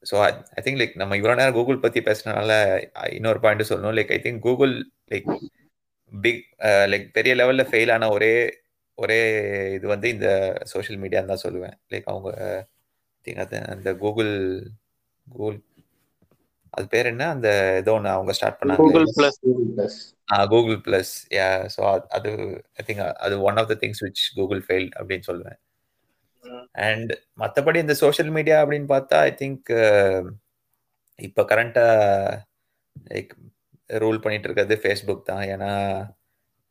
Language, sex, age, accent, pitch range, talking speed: Tamil, male, 30-49, native, 100-130 Hz, 120 wpm